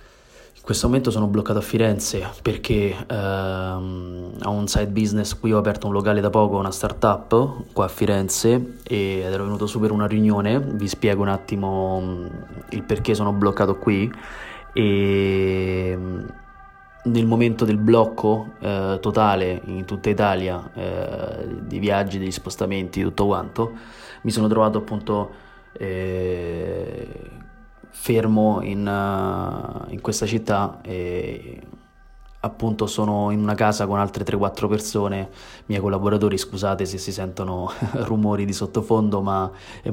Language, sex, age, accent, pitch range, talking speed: Italian, male, 20-39, native, 95-110 Hz, 130 wpm